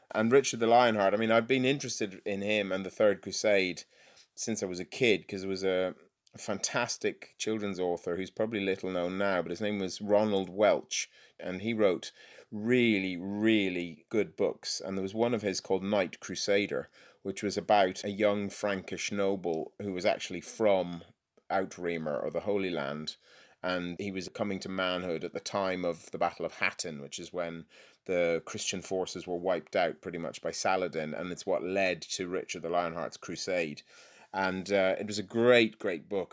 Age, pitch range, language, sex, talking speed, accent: 30-49, 90-105 Hz, English, male, 190 wpm, British